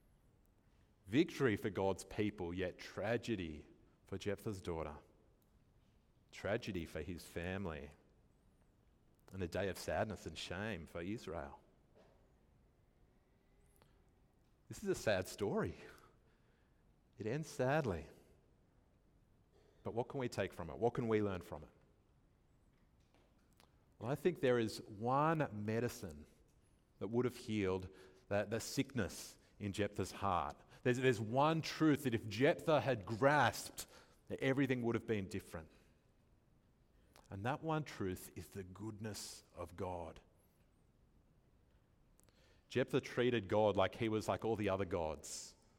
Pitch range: 90-115 Hz